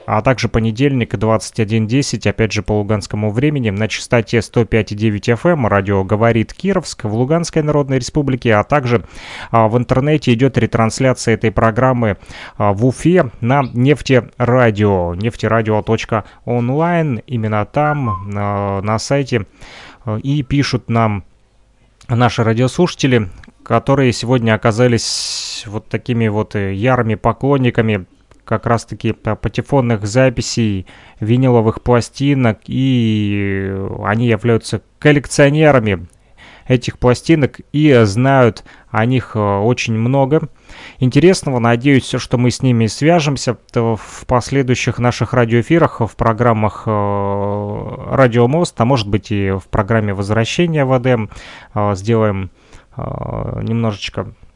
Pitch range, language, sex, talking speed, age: 110-130 Hz, Russian, male, 105 wpm, 30-49